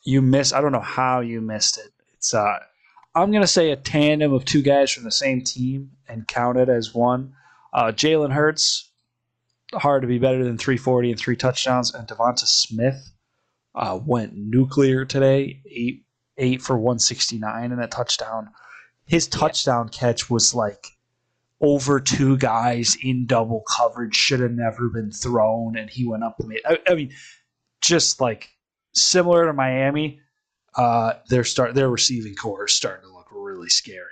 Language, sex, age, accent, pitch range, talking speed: English, male, 20-39, American, 120-145 Hz, 170 wpm